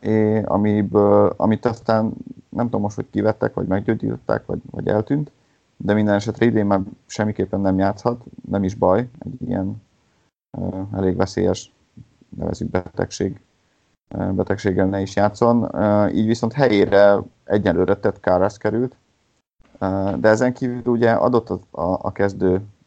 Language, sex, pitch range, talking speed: Hungarian, male, 95-110 Hz, 130 wpm